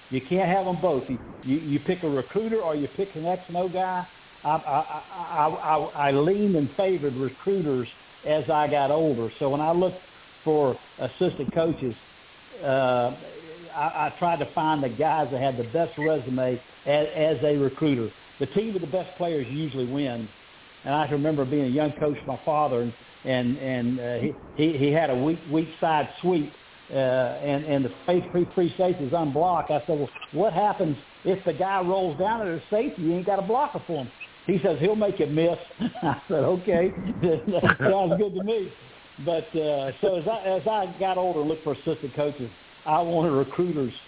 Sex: male